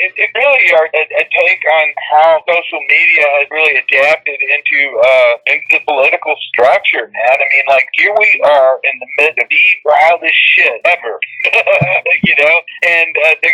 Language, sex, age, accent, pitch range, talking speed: English, male, 40-59, American, 125-160 Hz, 175 wpm